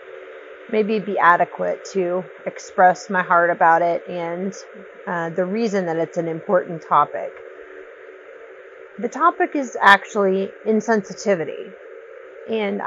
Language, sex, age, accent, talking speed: English, female, 30-49, American, 110 wpm